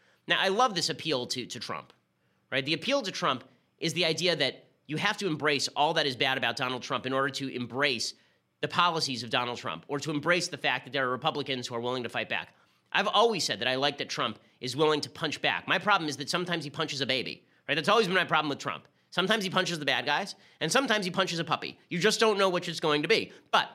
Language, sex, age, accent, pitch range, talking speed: English, male, 30-49, American, 130-175 Hz, 265 wpm